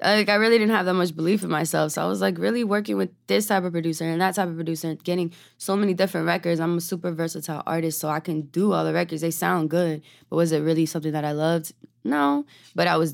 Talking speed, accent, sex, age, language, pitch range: 265 wpm, American, female, 20-39, English, 155-185 Hz